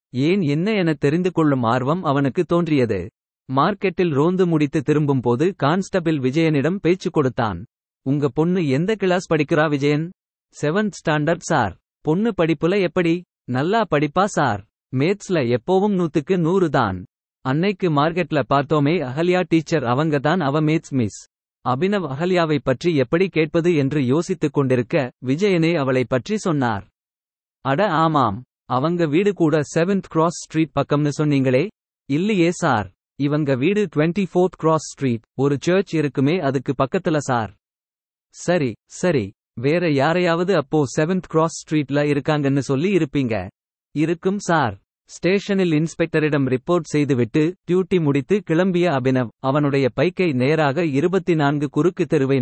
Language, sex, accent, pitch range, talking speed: Tamil, male, native, 135-175 Hz, 120 wpm